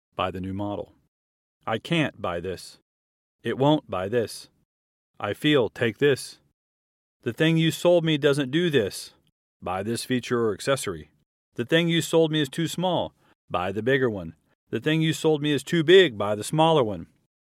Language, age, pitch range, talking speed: English, 40-59, 100-140 Hz, 180 wpm